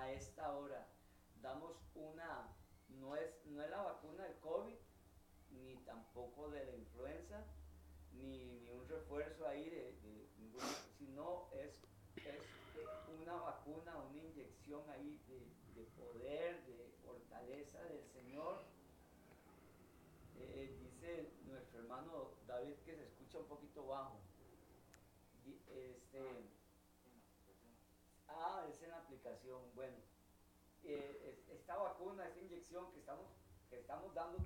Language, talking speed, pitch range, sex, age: Spanish, 115 wpm, 100-165 Hz, male, 40-59